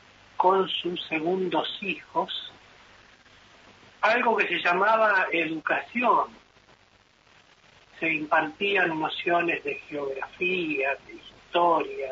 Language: Spanish